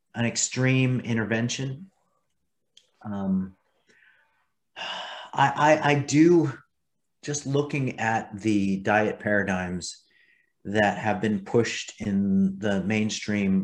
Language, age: English, 30-49